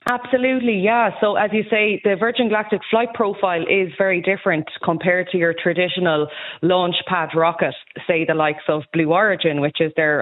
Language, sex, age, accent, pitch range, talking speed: English, female, 20-39, Irish, 165-195 Hz, 175 wpm